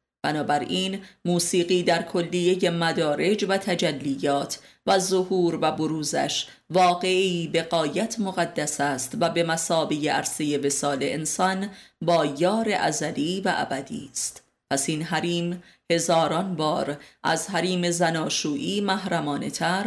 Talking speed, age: 110 wpm, 30-49